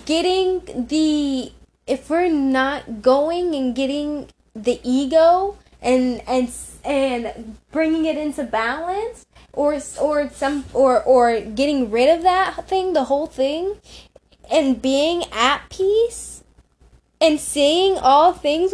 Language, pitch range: English, 255-355 Hz